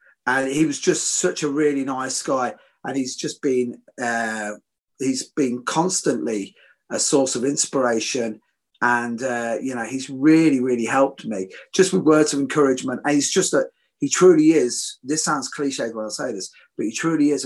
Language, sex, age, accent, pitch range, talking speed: English, male, 30-49, British, 120-165 Hz, 180 wpm